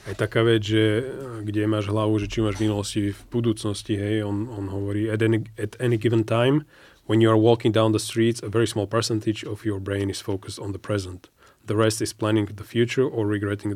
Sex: male